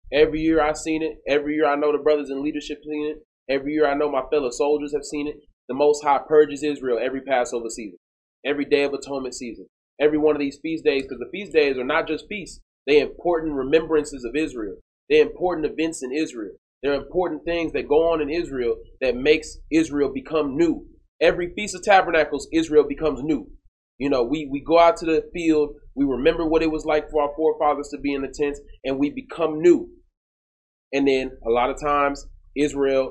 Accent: American